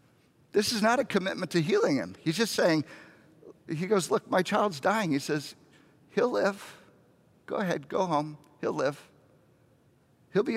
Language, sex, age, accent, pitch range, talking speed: English, male, 50-69, American, 145-200 Hz, 165 wpm